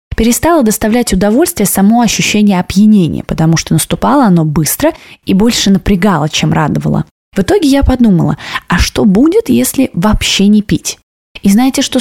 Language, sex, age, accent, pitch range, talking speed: Russian, female, 20-39, native, 180-230 Hz, 150 wpm